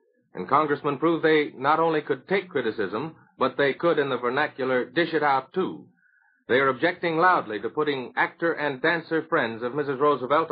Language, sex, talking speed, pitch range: English, male, 185 wpm, 145-170 Hz